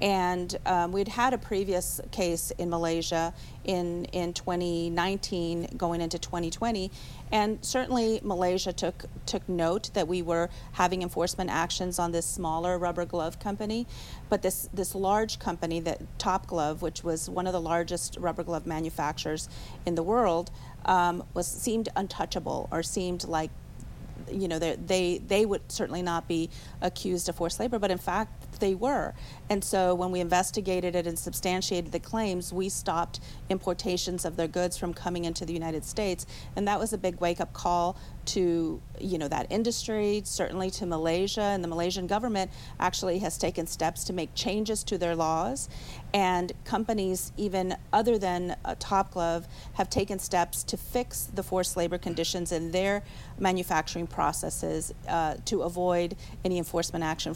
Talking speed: 160 wpm